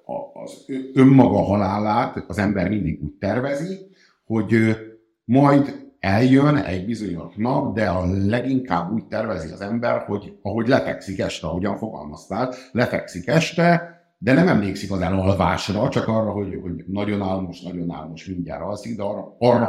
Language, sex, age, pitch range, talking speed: Hungarian, male, 60-79, 90-120 Hz, 145 wpm